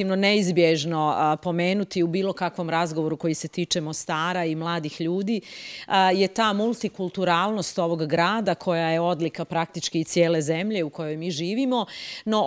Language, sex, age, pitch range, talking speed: English, female, 30-49, 165-210 Hz, 145 wpm